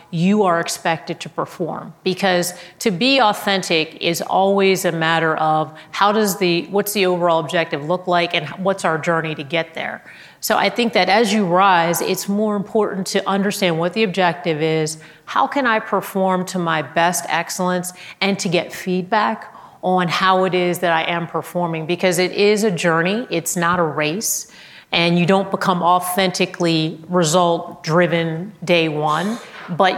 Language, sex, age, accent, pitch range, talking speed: English, female, 30-49, American, 165-190 Hz, 170 wpm